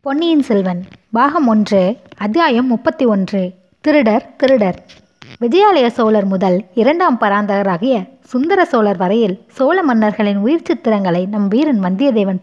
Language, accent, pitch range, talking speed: Tamil, native, 200-270 Hz, 105 wpm